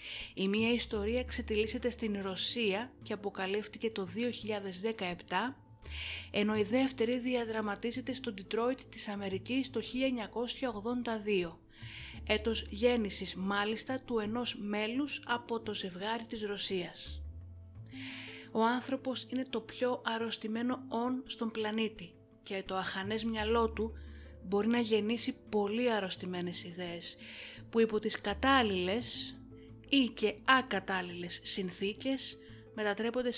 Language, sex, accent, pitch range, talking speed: Greek, female, native, 190-235 Hz, 110 wpm